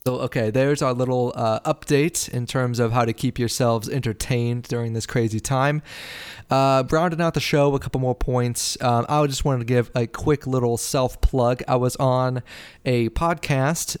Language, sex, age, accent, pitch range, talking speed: English, male, 30-49, American, 120-135 Hz, 185 wpm